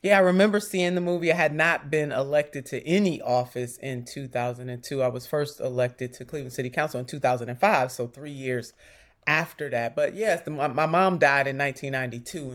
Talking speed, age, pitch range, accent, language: 180 wpm, 30-49, 130-165 Hz, American, English